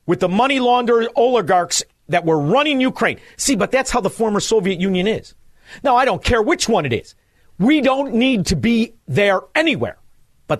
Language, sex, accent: English, male, American